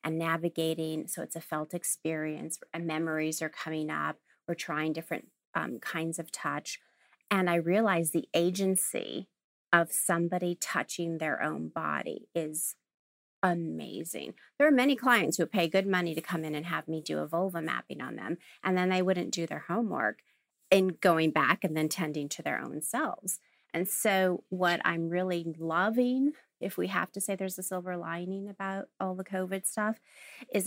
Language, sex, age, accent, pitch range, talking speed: English, female, 30-49, American, 165-195 Hz, 175 wpm